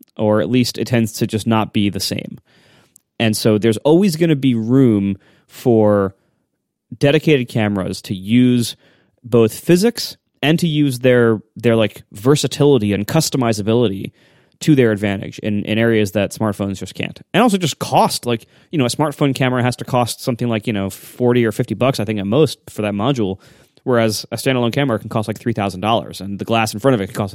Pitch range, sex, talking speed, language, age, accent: 105-140 Hz, male, 200 wpm, English, 30-49, American